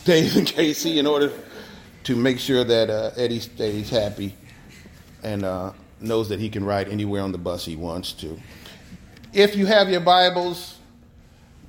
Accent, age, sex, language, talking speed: American, 40-59, male, English, 155 wpm